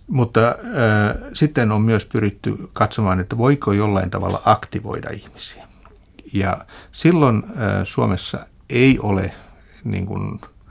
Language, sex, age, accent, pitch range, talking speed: Finnish, male, 60-79, native, 95-110 Hz, 120 wpm